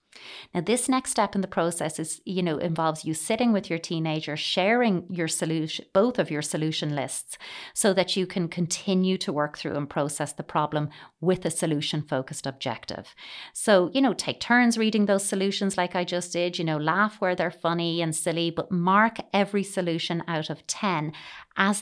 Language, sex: English, female